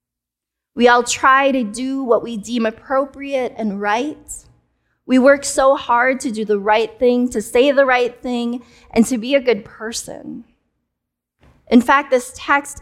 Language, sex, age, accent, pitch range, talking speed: English, female, 20-39, American, 220-270 Hz, 165 wpm